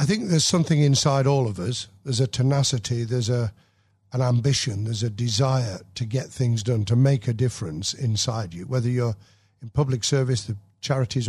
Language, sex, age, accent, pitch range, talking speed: English, male, 50-69, British, 110-140 Hz, 185 wpm